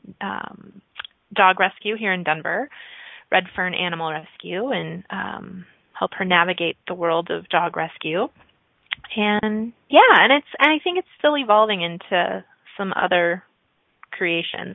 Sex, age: female, 30-49